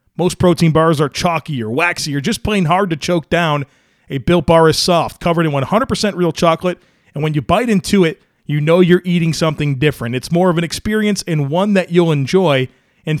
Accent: American